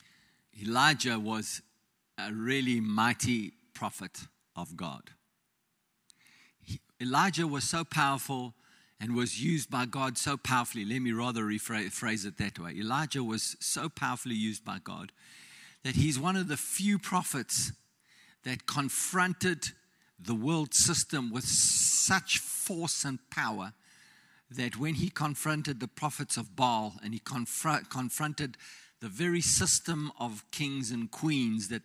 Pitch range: 120-165 Hz